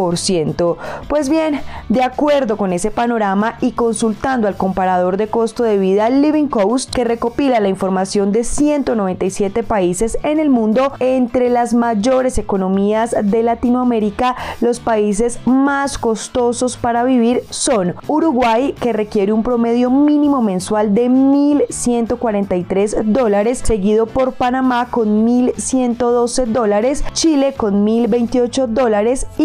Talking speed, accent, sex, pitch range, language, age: 115 wpm, Colombian, female, 210-255 Hz, Spanish, 20-39